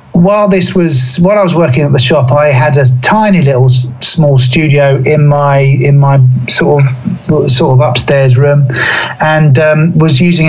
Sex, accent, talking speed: male, British, 185 wpm